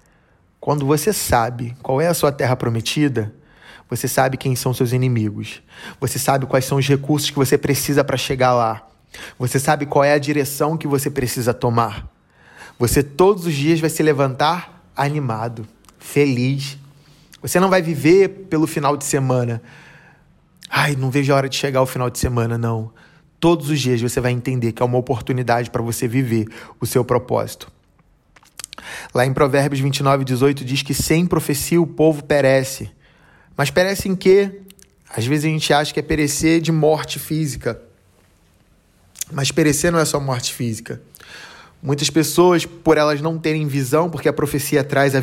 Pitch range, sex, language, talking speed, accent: 125-155 Hz, male, Portuguese, 170 wpm, Brazilian